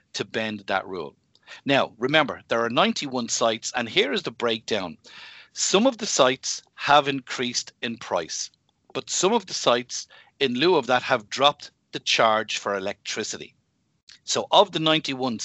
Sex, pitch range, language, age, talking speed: male, 115-155 Hz, English, 50-69, 165 wpm